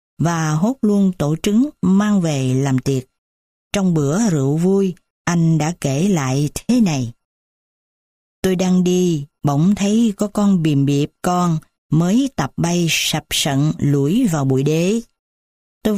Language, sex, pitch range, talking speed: Vietnamese, female, 150-205 Hz, 145 wpm